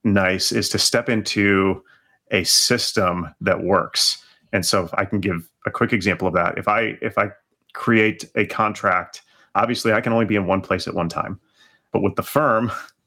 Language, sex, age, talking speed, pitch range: English, male, 30-49, 195 wpm, 95-115 Hz